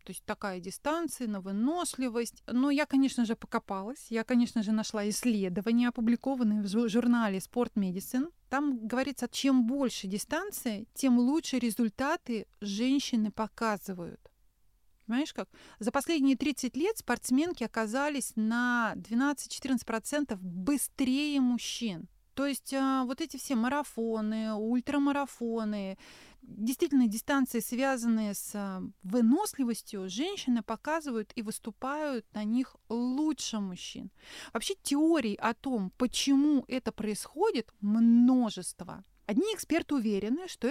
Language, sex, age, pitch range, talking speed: Russian, female, 30-49, 220-275 Hz, 110 wpm